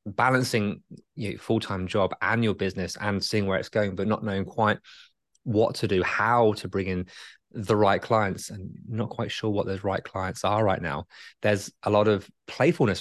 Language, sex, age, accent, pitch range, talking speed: English, male, 20-39, British, 100-125 Hz, 195 wpm